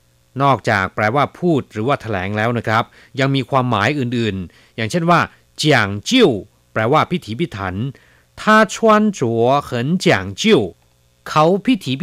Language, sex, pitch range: Chinese, male, 105-145 Hz